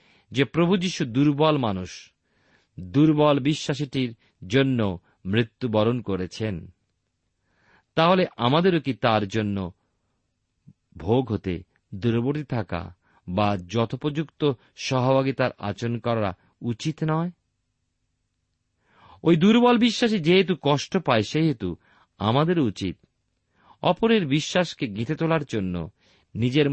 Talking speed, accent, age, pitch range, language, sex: 90 wpm, native, 50-69, 95-145 Hz, Bengali, male